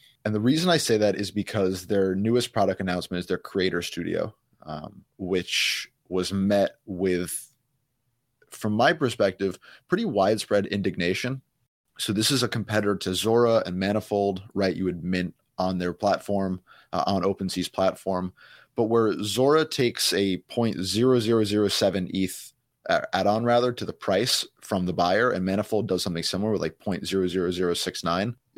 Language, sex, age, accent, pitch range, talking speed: English, male, 30-49, American, 95-115 Hz, 155 wpm